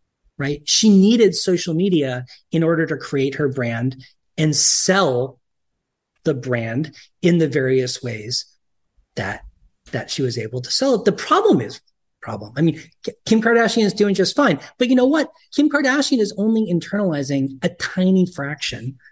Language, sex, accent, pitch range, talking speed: English, male, American, 135-210 Hz, 160 wpm